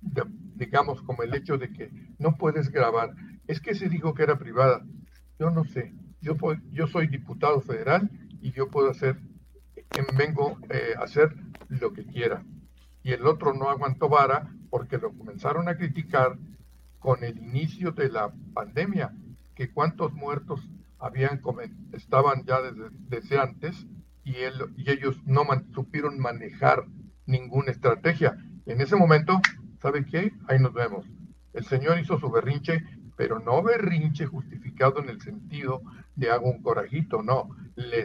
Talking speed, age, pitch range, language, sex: 155 wpm, 50-69, 130-165 Hz, Spanish, male